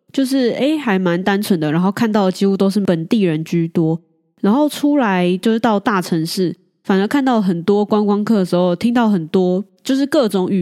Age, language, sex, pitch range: 20-39, Chinese, female, 185-250 Hz